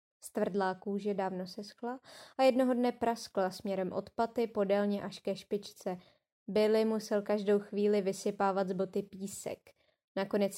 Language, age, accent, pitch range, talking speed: Czech, 20-39, native, 195-230 Hz, 135 wpm